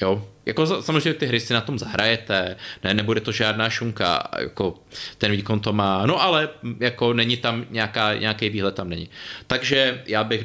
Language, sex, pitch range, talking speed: Czech, male, 100-115 Hz, 185 wpm